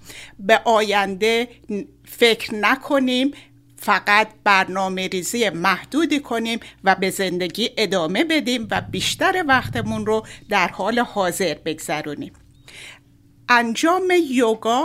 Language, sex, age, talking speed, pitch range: Persian, female, 60-79, 95 wpm, 205-305 Hz